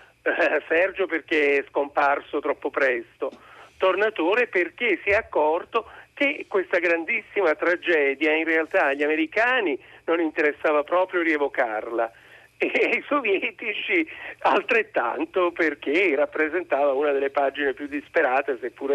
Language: Italian